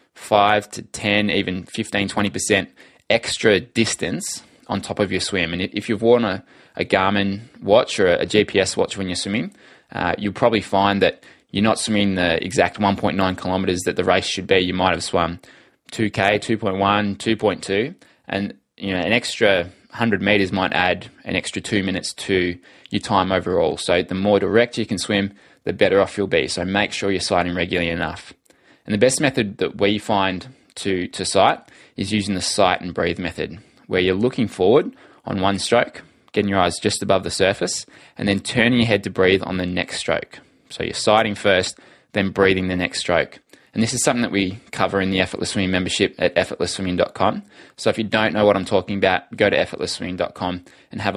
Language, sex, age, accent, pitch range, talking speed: English, male, 20-39, Australian, 95-105 Hz, 195 wpm